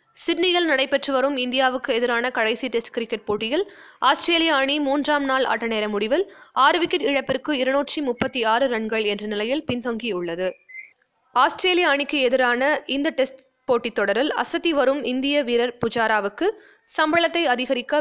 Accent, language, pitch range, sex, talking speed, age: native, Tamil, 230-295 Hz, female, 125 wpm, 20-39